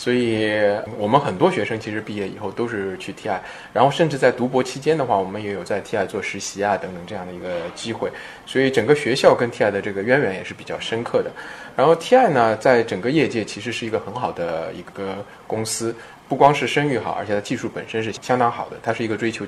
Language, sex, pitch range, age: Chinese, male, 100-125 Hz, 20-39